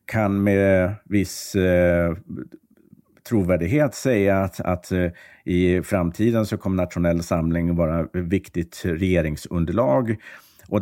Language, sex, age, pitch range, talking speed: Swedish, male, 50-69, 85-110 Hz, 110 wpm